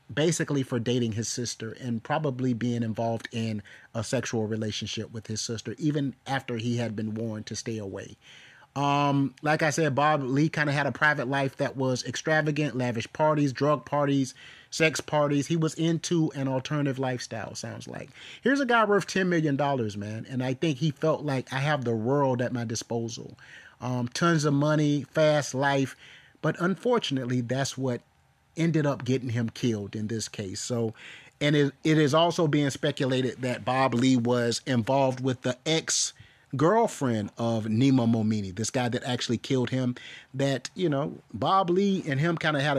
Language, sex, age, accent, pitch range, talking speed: English, male, 30-49, American, 120-150 Hz, 180 wpm